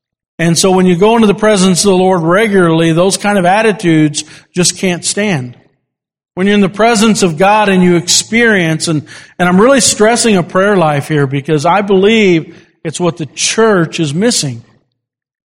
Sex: male